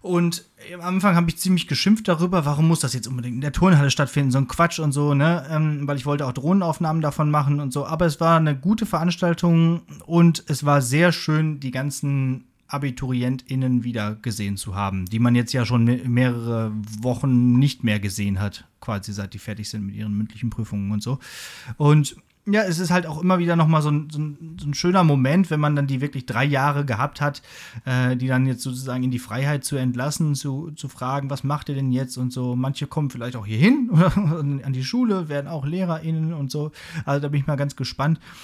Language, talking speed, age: German, 215 wpm, 30-49